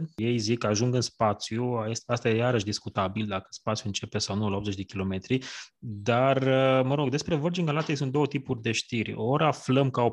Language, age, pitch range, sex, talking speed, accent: Romanian, 20-39, 105-130 Hz, male, 200 wpm, native